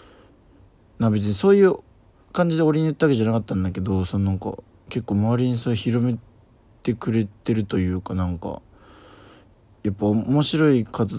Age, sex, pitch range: 20-39, male, 95-115 Hz